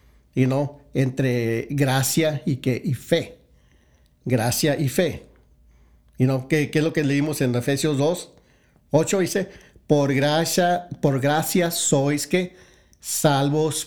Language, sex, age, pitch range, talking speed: English, male, 50-69, 135-165 Hz, 145 wpm